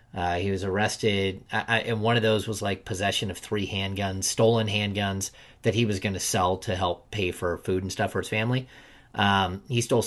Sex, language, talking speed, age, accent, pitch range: male, English, 210 wpm, 30-49, American, 95-115 Hz